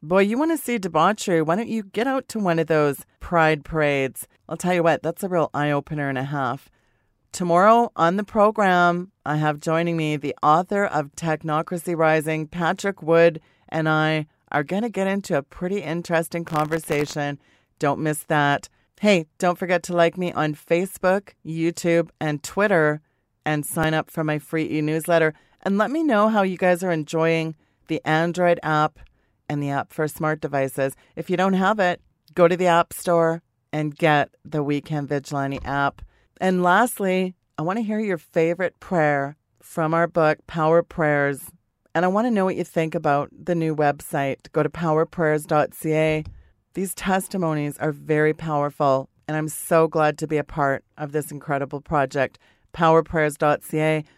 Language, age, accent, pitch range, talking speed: English, 40-59, American, 150-175 Hz, 175 wpm